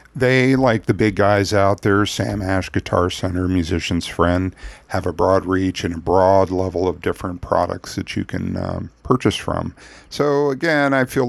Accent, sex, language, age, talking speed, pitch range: American, male, English, 50-69, 180 wpm, 90-115 Hz